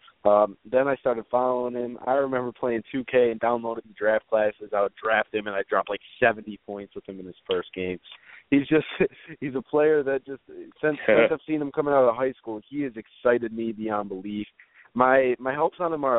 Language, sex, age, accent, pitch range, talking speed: English, male, 20-39, American, 110-155 Hz, 220 wpm